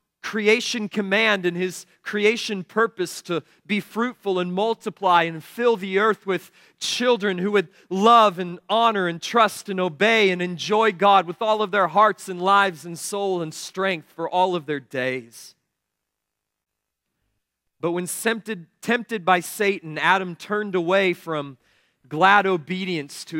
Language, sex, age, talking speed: English, male, 40-59, 145 wpm